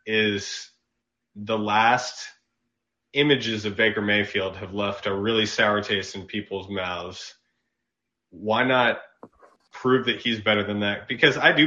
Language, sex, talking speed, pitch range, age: English, male, 140 wpm, 100-115 Hz, 30-49